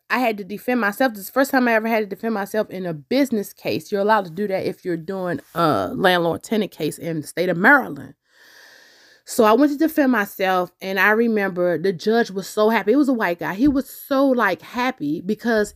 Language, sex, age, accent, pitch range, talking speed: English, female, 20-39, American, 200-275 Hz, 230 wpm